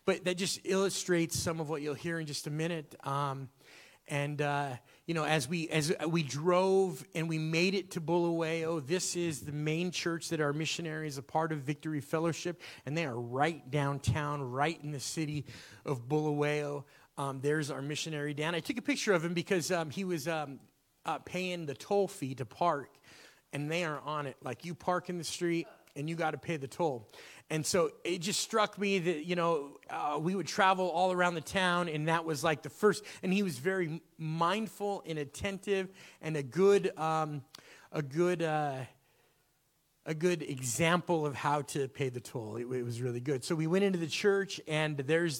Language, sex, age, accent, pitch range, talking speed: English, male, 30-49, American, 145-180 Hz, 205 wpm